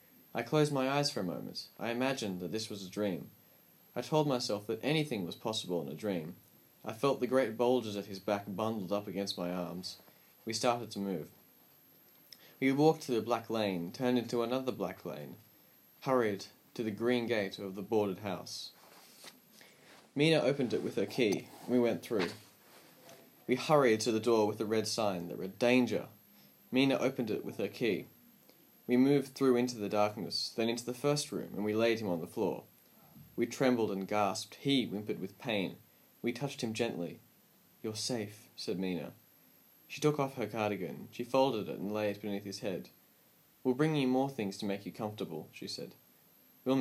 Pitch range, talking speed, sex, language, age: 100-125 Hz, 190 wpm, male, English, 20-39